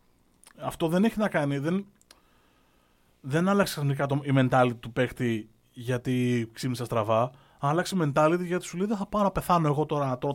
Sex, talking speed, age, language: male, 180 wpm, 30-49, Greek